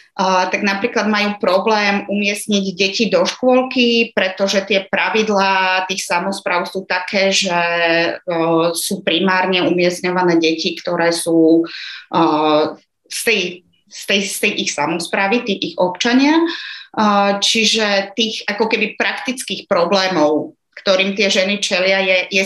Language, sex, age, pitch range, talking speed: Slovak, female, 30-49, 185-215 Hz, 130 wpm